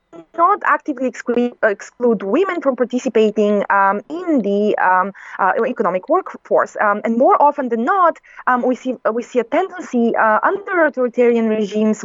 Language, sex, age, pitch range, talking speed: English, female, 20-39, 215-260 Hz, 150 wpm